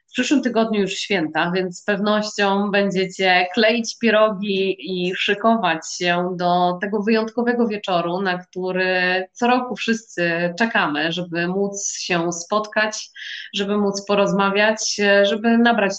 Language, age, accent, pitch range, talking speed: Polish, 20-39, native, 180-215 Hz, 125 wpm